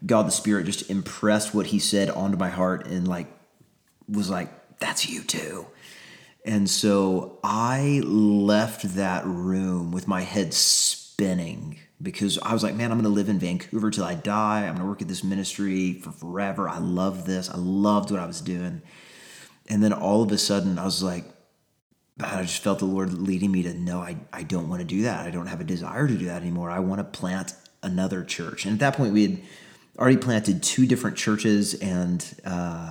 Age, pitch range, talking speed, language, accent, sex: 30-49, 95-110 Hz, 195 wpm, English, American, male